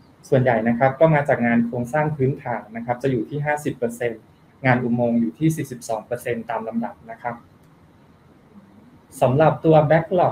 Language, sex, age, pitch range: Thai, male, 20-39, 120-145 Hz